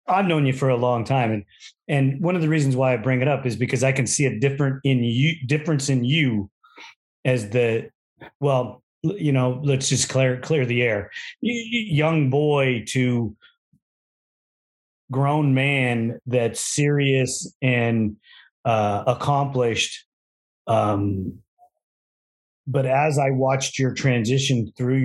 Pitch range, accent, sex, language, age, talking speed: 120-140 Hz, American, male, English, 30-49, 140 wpm